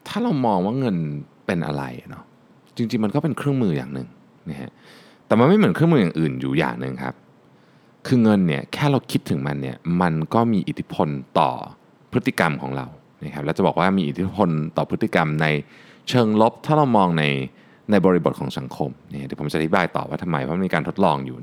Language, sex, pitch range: Thai, male, 75-120 Hz